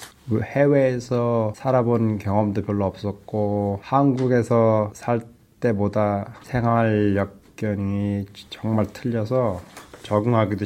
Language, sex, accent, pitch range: Korean, male, native, 105-125 Hz